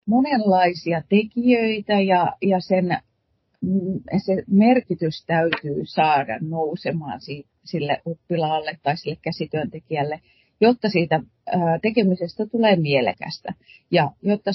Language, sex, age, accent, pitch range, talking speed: Finnish, female, 30-49, native, 150-190 Hz, 85 wpm